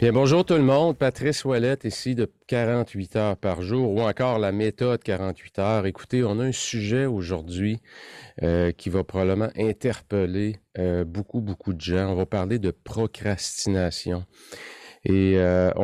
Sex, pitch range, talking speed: male, 90-115 Hz, 160 wpm